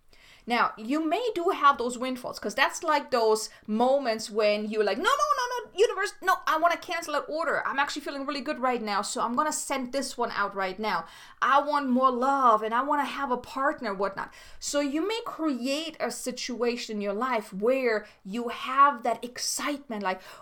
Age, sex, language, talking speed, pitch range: 30-49, female, English, 210 wpm, 235-310 Hz